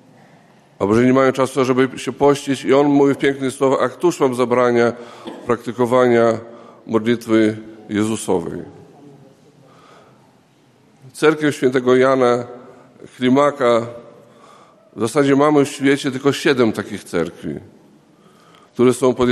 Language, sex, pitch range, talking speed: Polish, male, 120-140 Hz, 110 wpm